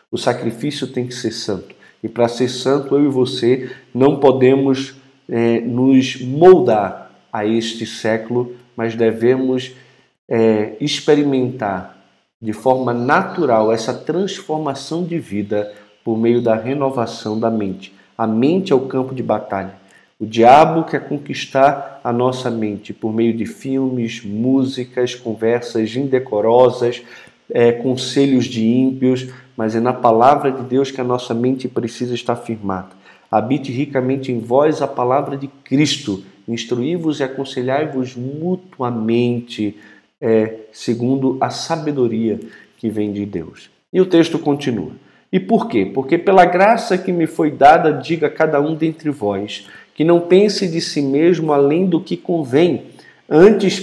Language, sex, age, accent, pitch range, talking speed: Portuguese, male, 40-59, Brazilian, 115-145 Hz, 145 wpm